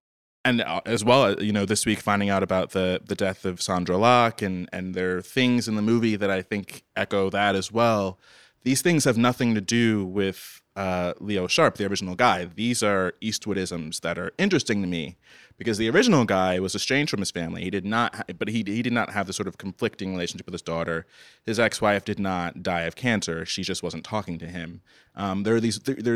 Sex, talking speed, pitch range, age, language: male, 225 wpm, 90-115 Hz, 30-49, English